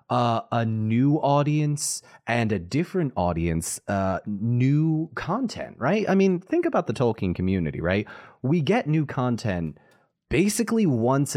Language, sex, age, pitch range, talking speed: English, male, 30-49, 100-140 Hz, 135 wpm